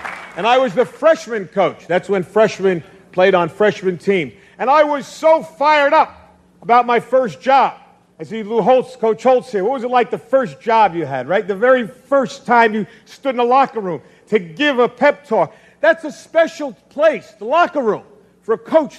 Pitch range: 165-230 Hz